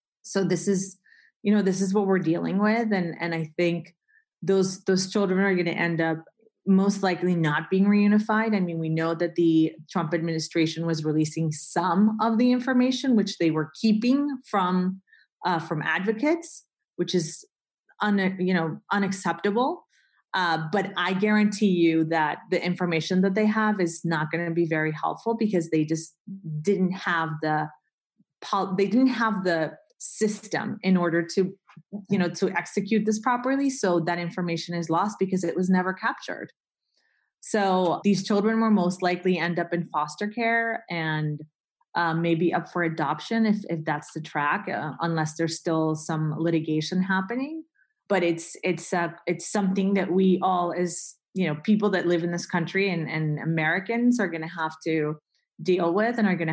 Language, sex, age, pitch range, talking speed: English, female, 30-49, 165-205 Hz, 175 wpm